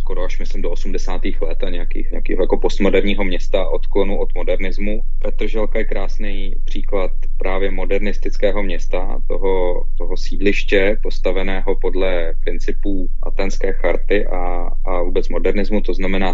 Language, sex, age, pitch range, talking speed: Slovak, male, 30-49, 95-120 Hz, 130 wpm